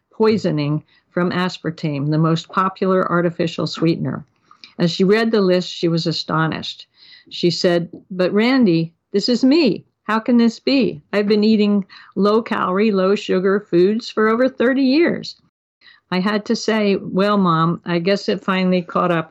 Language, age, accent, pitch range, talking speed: English, 60-79, American, 175-210 Hz, 150 wpm